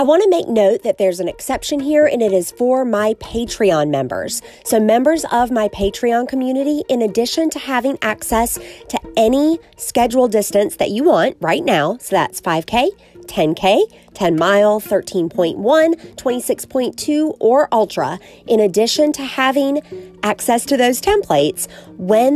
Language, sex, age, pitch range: English, female, 30-49, 190-260 Hz